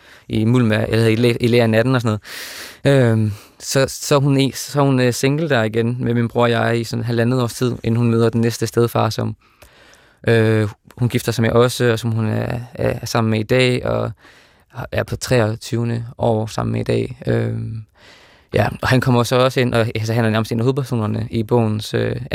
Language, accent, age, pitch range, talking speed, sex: Danish, native, 20-39, 110-120 Hz, 210 wpm, male